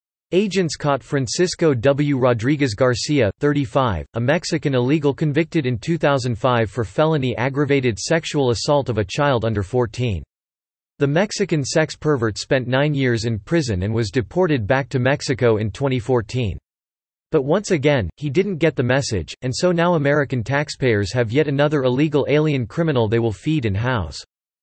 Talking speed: 155 wpm